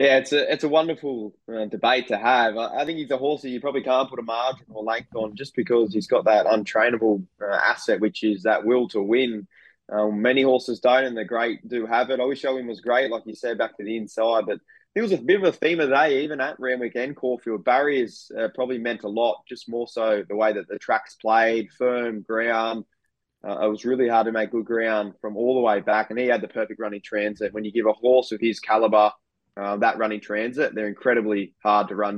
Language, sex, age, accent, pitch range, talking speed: English, male, 20-39, Australian, 110-130 Hz, 250 wpm